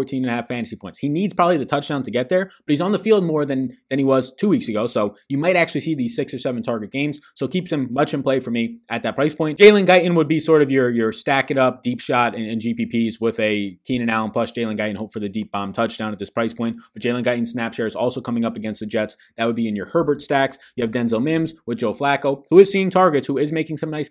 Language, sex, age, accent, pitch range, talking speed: English, male, 20-39, American, 115-145 Hz, 295 wpm